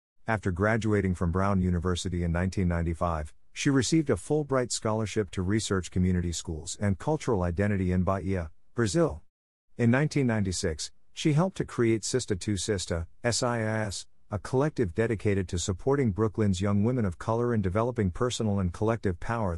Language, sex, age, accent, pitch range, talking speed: English, male, 50-69, American, 90-115 Hz, 140 wpm